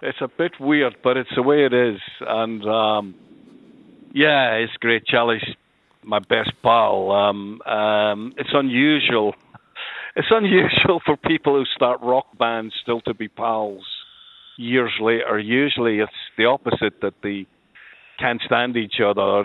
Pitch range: 105-130 Hz